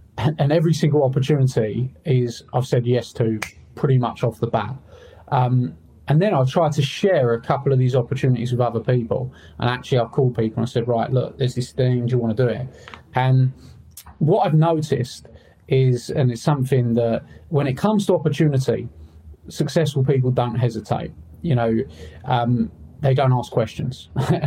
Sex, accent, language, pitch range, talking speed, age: male, British, English, 120-150 Hz, 185 wpm, 30-49